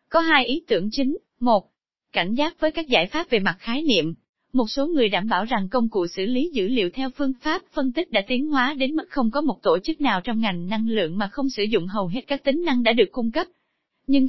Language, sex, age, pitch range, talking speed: Vietnamese, female, 20-39, 215-290 Hz, 260 wpm